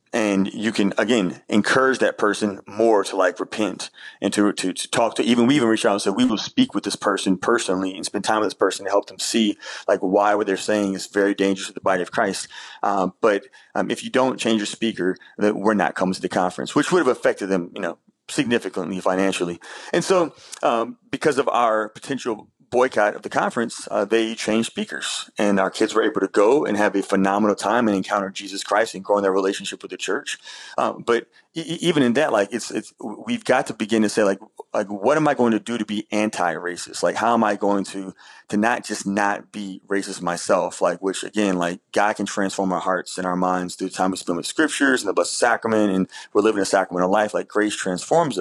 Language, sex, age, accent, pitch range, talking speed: English, male, 30-49, American, 95-110 Hz, 230 wpm